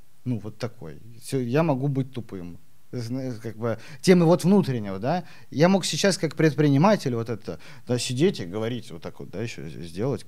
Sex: male